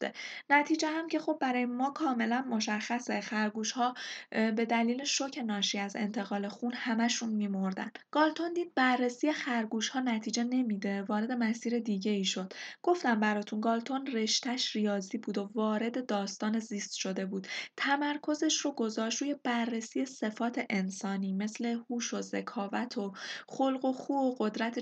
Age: 10-29